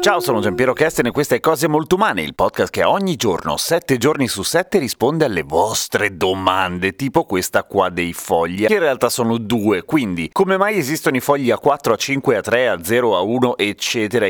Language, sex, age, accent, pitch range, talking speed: Italian, male, 30-49, native, 110-145 Hz, 190 wpm